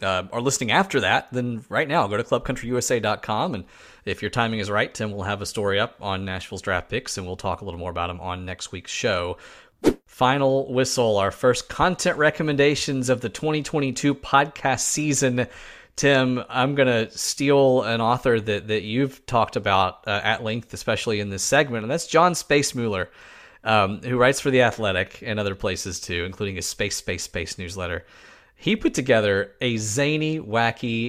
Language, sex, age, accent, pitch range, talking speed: English, male, 30-49, American, 100-135 Hz, 185 wpm